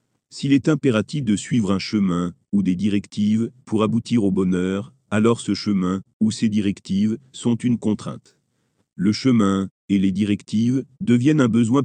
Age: 40-59